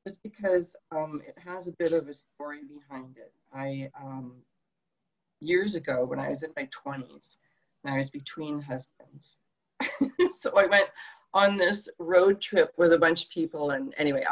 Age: 40-59